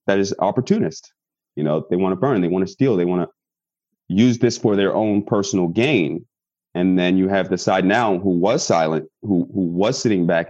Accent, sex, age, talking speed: American, male, 30-49, 215 wpm